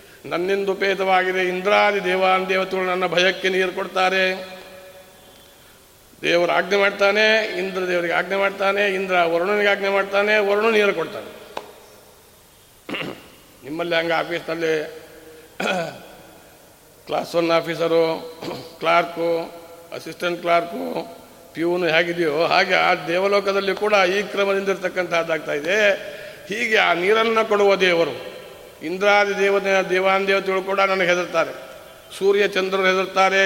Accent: native